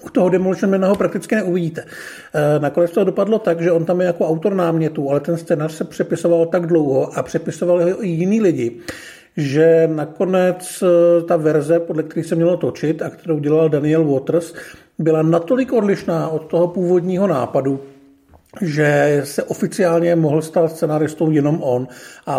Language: Czech